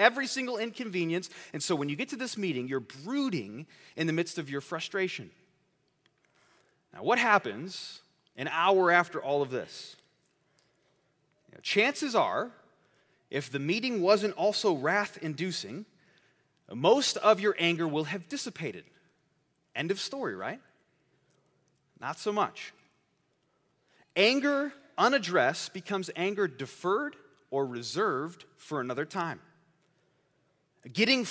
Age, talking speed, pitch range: 30-49, 115 wpm, 170-235 Hz